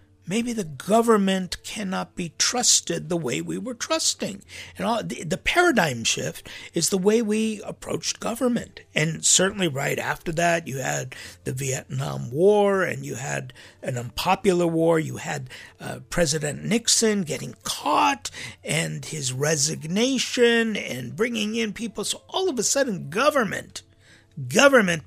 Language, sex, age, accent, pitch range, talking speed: English, male, 60-79, American, 125-210 Hz, 140 wpm